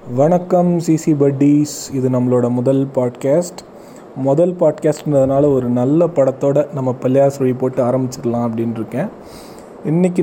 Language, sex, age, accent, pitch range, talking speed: Tamil, male, 30-49, native, 130-165 Hz, 125 wpm